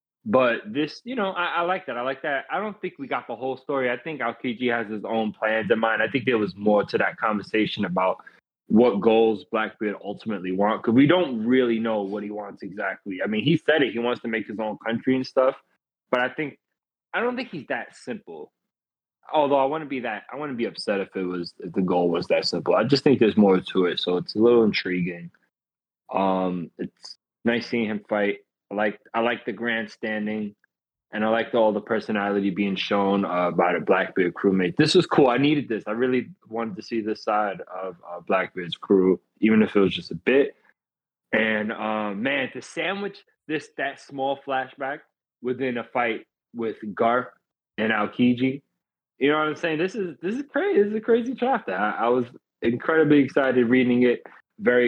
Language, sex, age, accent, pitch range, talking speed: English, male, 20-39, American, 105-135 Hz, 210 wpm